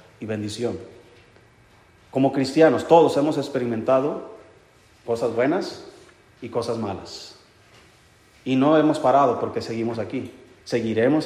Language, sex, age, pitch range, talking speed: Spanish, male, 40-59, 115-150 Hz, 105 wpm